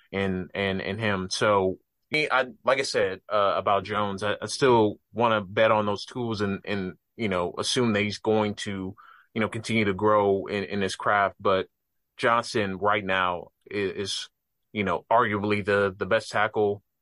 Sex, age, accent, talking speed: male, 30-49, American, 180 wpm